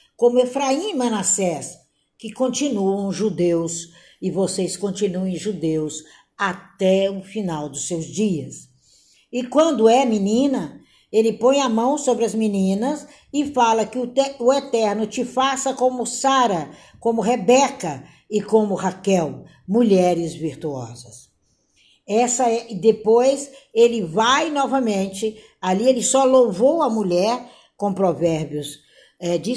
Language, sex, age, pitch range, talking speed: Portuguese, female, 60-79, 170-245 Hz, 115 wpm